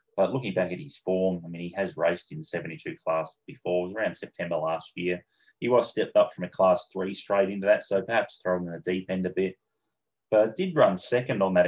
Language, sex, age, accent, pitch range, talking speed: English, male, 20-39, Australian, 90-110 Hz, 235 wpm